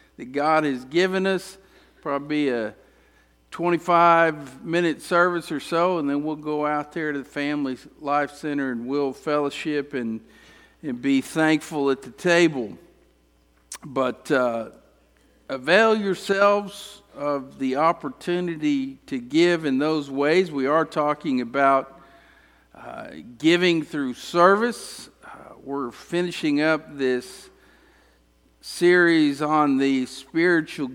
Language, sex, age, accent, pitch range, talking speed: English, male, 50-69, American, 125-175 Hz, 120 wpm